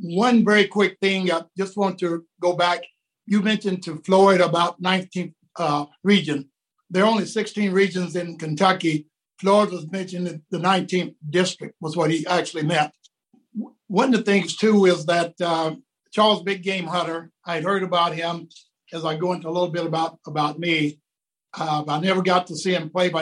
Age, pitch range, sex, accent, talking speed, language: 60-79, 170-195 Hz, male, American, 190 wpm, English